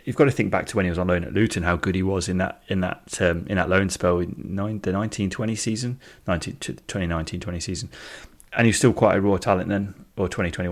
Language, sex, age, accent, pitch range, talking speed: English, male, 30-49, British, 90-100 Hz, 275 wpm